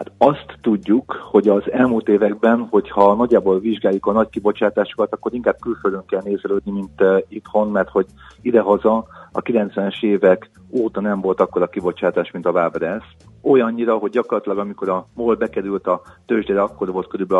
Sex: male